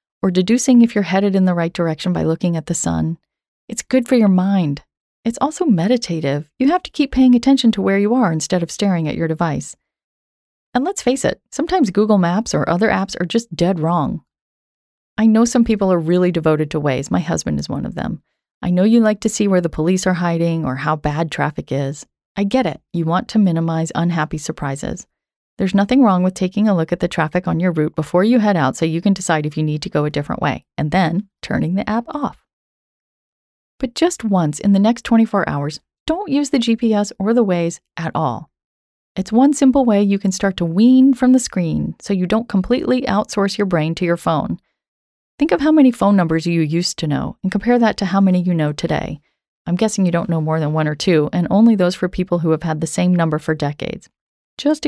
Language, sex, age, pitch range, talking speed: English, female, 30-49, 160-220 Hz, 230 wpm